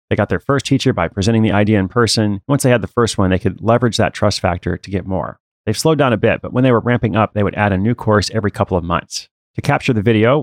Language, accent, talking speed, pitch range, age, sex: English, American, 295 wpm, 95-120 Hz, 30-49, male